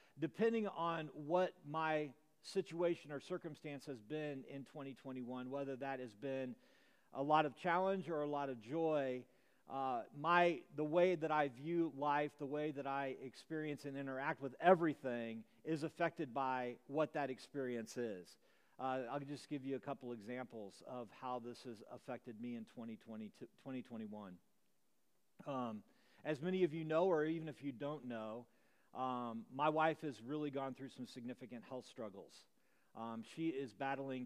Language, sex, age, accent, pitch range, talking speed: English, male, 40-59, American, 120-155 Hz, 160 wpm